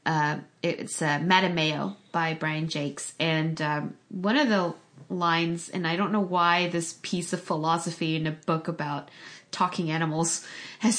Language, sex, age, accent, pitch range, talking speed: English, female, 20-39, American, 165-210 Hz, 160 wpm